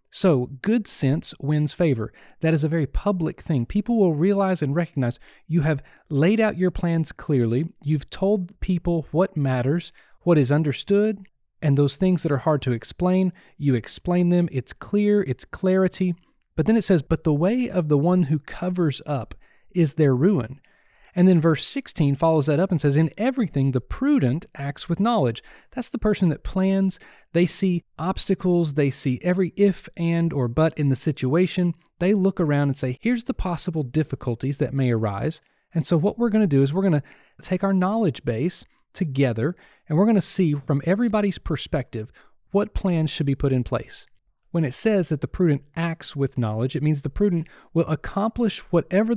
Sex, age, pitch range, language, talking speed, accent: male, 40-59, 145-190 Hz, English, 190 wpm, American